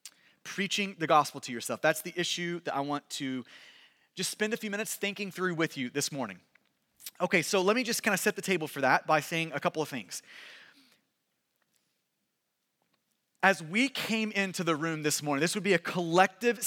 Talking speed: 195 wpm